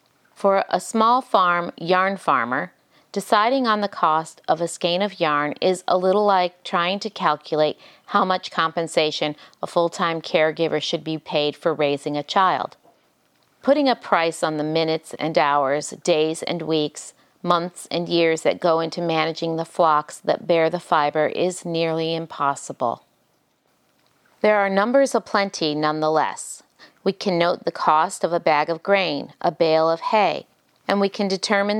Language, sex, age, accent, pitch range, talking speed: English, female, 40-59, American, 160-195 Hz, 160 wpm